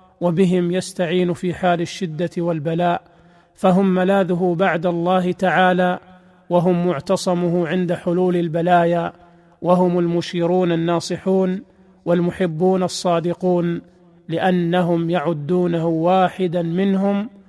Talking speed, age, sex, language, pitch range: 85 wpm, 40-59, male, Arabic, 175-195 Hz